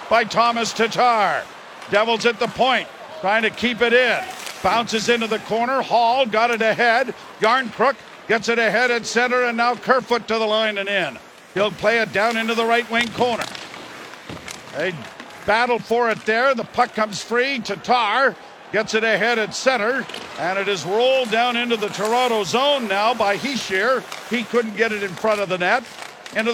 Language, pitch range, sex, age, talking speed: English, 210-245 Hz, male, 50-69, 180 wpm